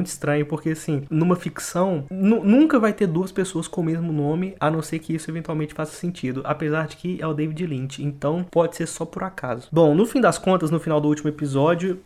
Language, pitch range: Portuguese, 145-175 Hz